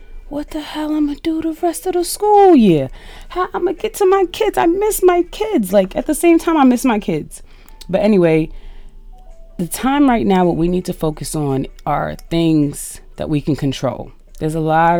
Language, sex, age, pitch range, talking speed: English, female, 30-49, 150-200 Hz, 220 wpm